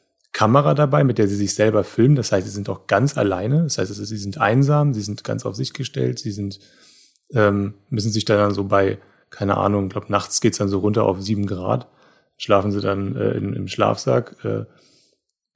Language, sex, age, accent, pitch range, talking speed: German, male, 30-49, German, 105-125 Hz, 215 wpm